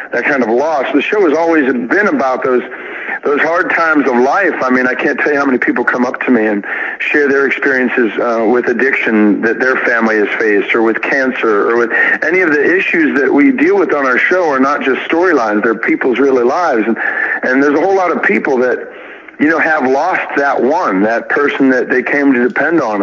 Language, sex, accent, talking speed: English, male, American, 230 wpm